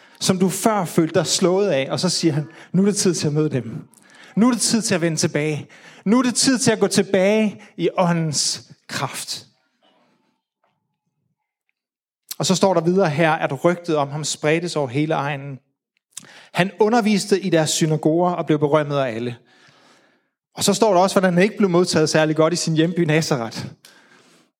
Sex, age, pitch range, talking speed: male, 30-49, 155-205 Hz, 190 wpm